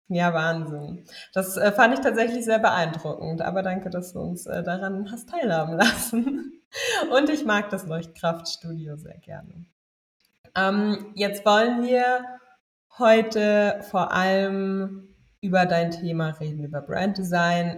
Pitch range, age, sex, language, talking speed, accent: 160-195 Hz, 20-39, female, German, 130 wpm, German